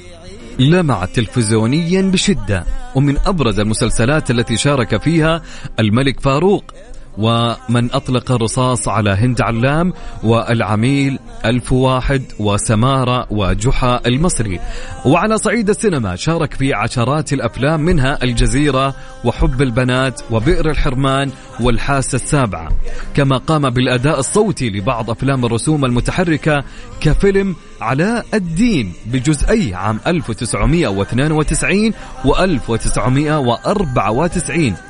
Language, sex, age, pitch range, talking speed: Arabic, male, 30-49, 115-155 Hz, 95 wpm